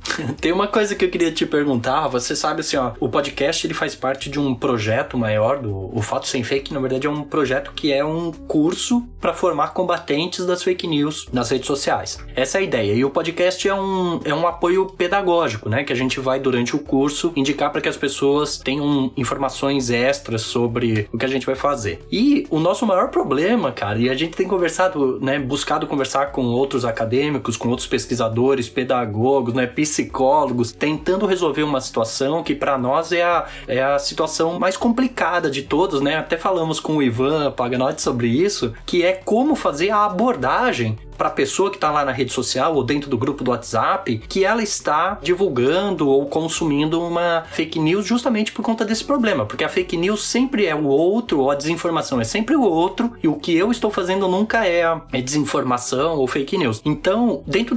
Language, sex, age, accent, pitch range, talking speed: Portuguese, male, 20-39, Brazilian, 130-180 Hz, 200 wpm